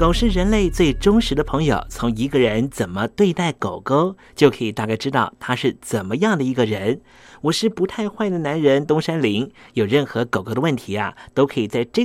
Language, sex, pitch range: Chinese, male, 115-170 Hz